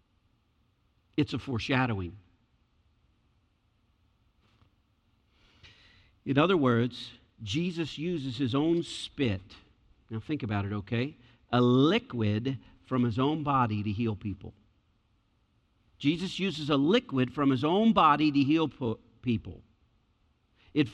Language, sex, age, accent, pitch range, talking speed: English, male, 50-69, American, 105-155 Hz, 105 wpm